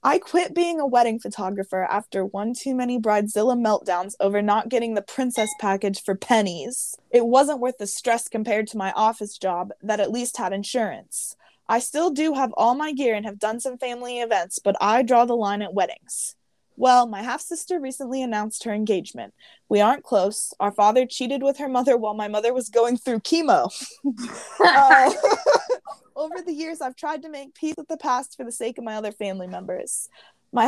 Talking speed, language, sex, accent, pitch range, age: 195 wpm, English, female, American, 215-275 Hz, 20-39